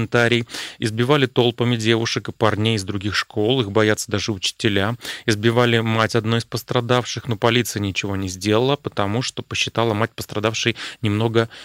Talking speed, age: 150 wpm, 30-49